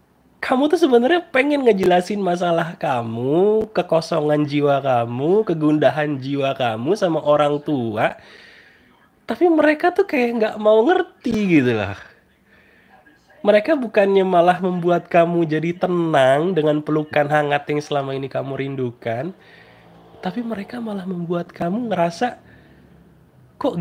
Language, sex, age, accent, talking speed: Indonesian, male, 20-39, native, 120 wpm